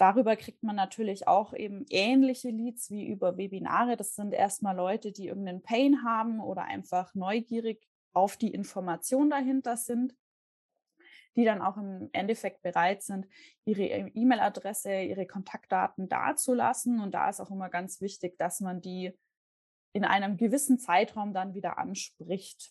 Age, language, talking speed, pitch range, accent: 20-39, German, 150 wpm, 185-235 Hz, German